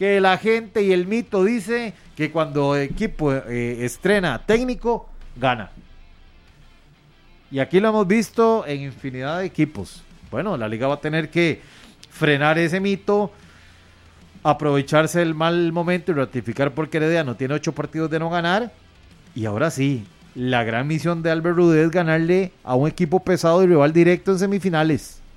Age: 30-49